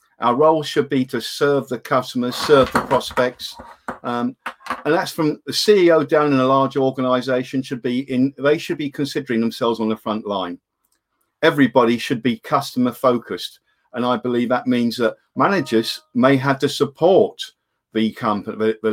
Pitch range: 120-150 Hz